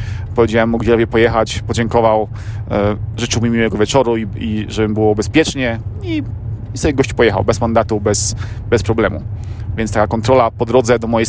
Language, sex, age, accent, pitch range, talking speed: Polish, male, 30-49, native, 110-125 Hz, 165 wpm